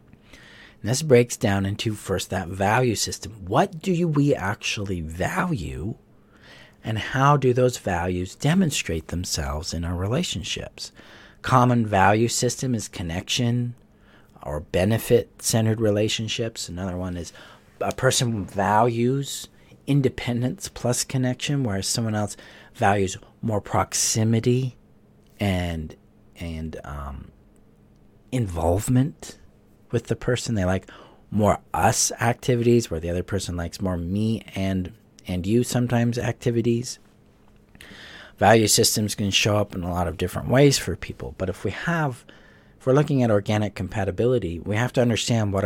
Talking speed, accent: 130 wpm, American